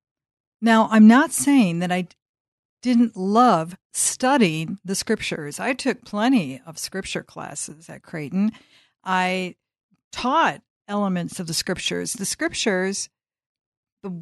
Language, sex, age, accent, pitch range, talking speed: English, female, 50-69, American, 175-220 Hz, 120 wpm